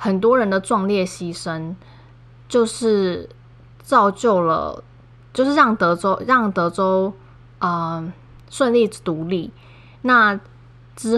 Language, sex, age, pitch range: Chinese, female, 10-29, 165-220 Hz